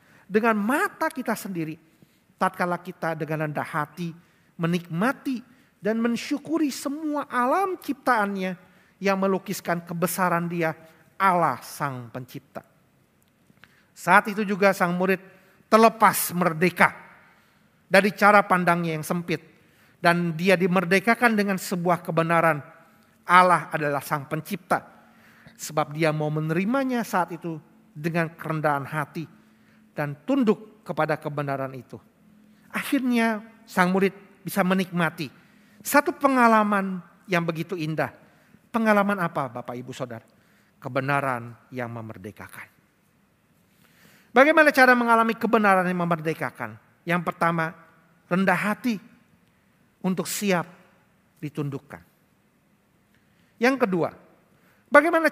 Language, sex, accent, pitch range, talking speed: Indonesian, male, native, 160-215 Hz, 100 wpm